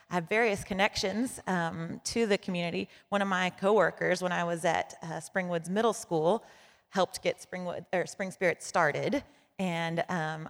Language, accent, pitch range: English, American, 175-205 Hz